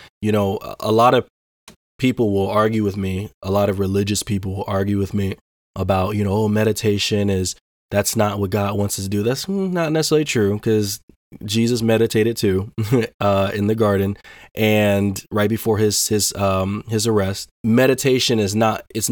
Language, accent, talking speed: English, American, 180 wpm